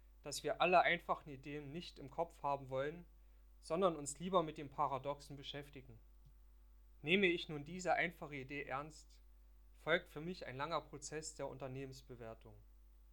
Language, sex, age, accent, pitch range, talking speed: German, male, 40-59, German, 115-160 Hz, 145 wpm